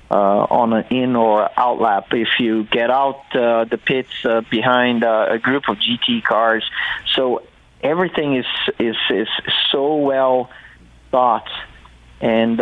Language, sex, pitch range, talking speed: English, male, 115-130 Hz, 145 wpm